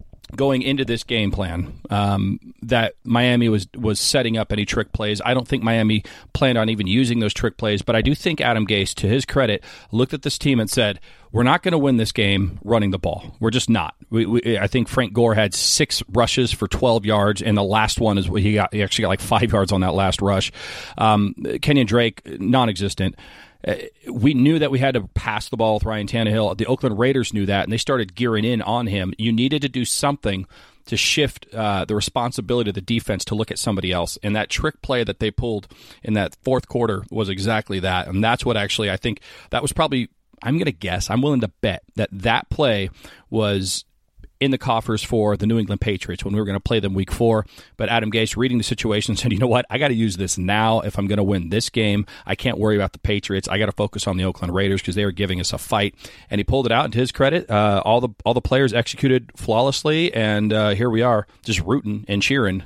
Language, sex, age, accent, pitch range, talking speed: English, male, 40-59, American, 100-120 Hz, 240 wpm